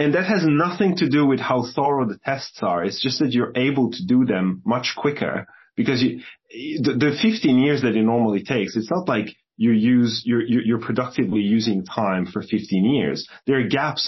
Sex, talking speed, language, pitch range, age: male, 205 wpm, English, 100-125 Hz, 30-49